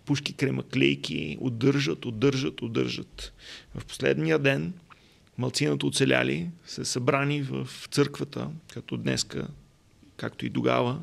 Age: 30-49